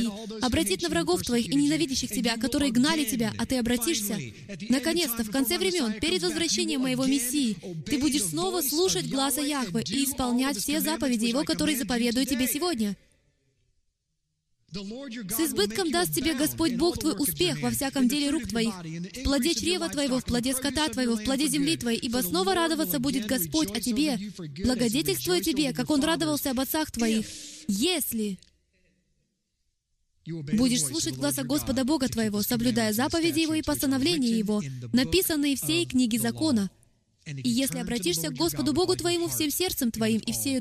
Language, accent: Russian, native